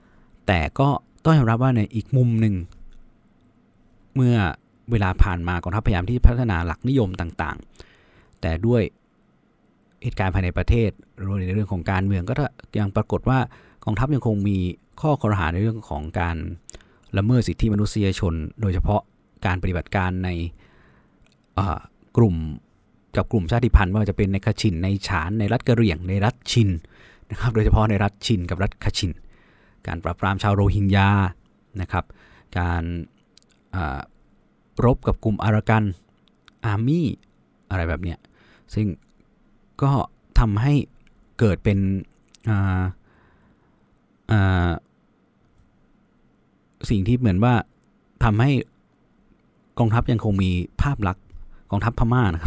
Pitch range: 90-115 Hz